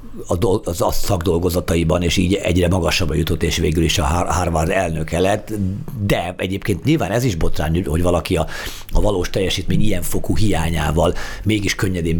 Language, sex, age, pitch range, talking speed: Hungarian, male, 50-69, 85-115 Hz, 155 wpm